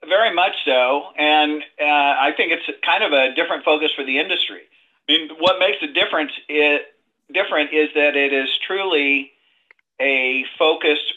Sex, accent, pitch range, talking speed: male, American, 135-160 Hz, 165 wpm